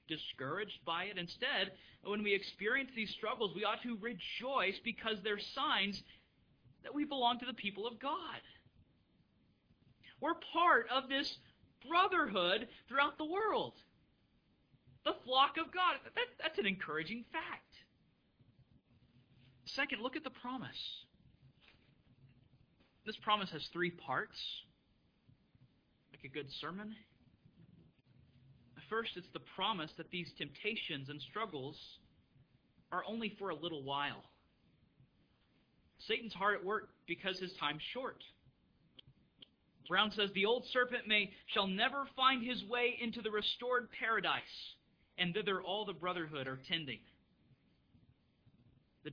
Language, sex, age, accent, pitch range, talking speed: English, male, 40-59, American, 155-245 Hz, 120 wpm